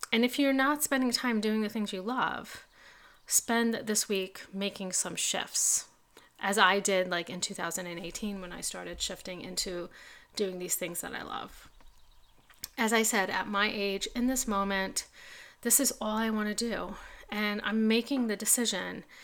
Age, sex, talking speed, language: 30-49, female, 170 wpm, English